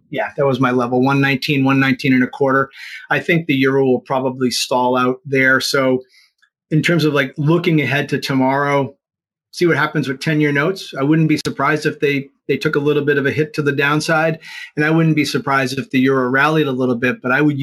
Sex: male